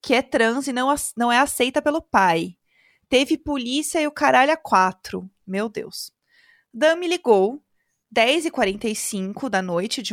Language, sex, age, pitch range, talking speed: Portuguese, female, 20-39, 210-285 Hz, 155 wpm